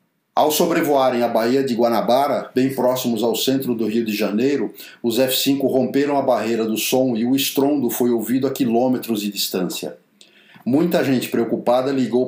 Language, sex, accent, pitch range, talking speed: Portuguese, male, Brazilian, 115-135 Hz, 165 wpm